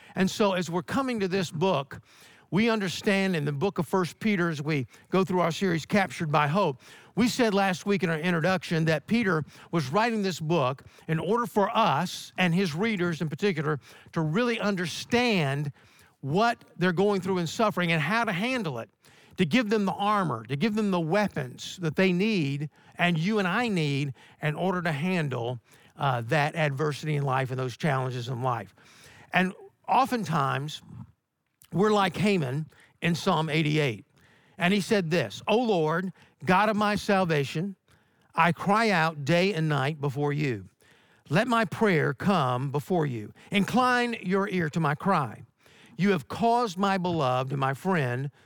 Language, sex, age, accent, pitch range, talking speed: English, male, 50-69, American, 145-200 Hz, 170 wpm